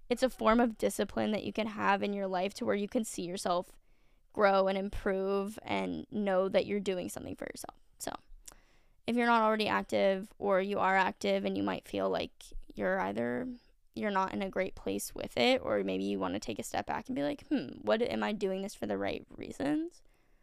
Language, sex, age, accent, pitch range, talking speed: English, female, 10-29, American, 190-245 Hz, 225 wpm